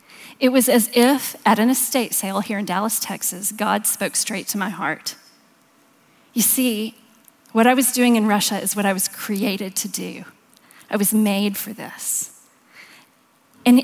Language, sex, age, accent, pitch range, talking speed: English, female, 40-59, American, 220-265 Hz, 170 wpm